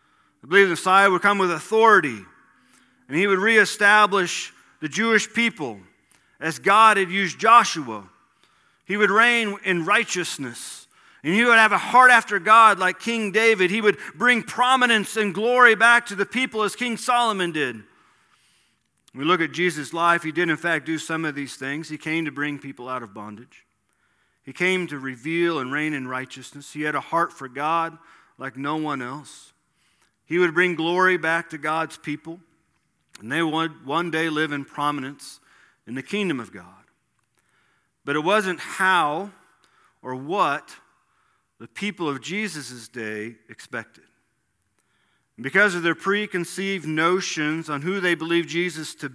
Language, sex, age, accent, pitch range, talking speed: English, male, 40-59, American, 145-200 Hz, 165 wpm